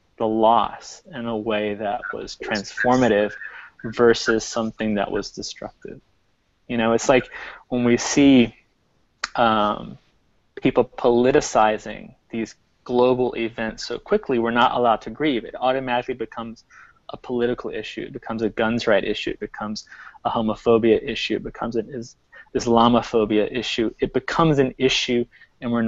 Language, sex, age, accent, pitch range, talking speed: English, male, 20-39, American, 110-125 Hz, 145 wpm